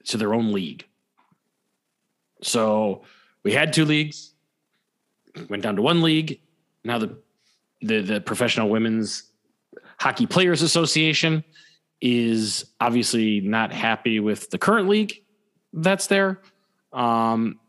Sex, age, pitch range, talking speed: male, 30-49, 110-160 Hz, 115 wpm